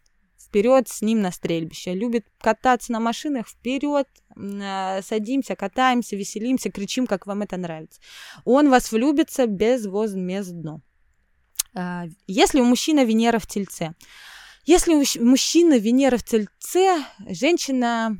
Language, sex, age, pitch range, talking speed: Russian, female, 20-39, 195-255 Hz, 120 wpm